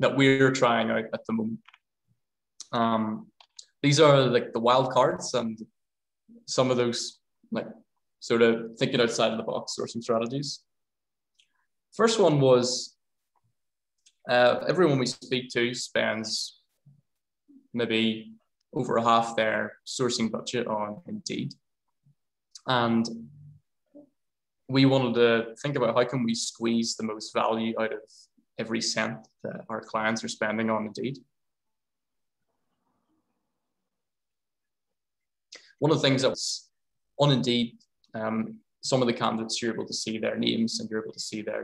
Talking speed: 135 wpm